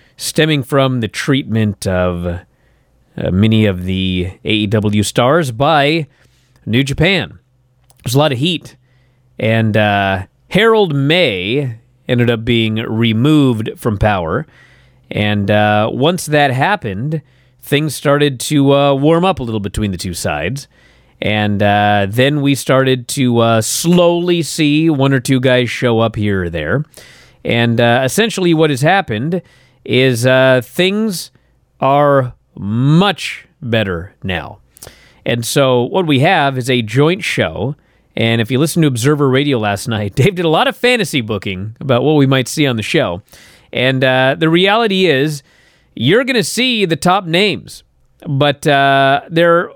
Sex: male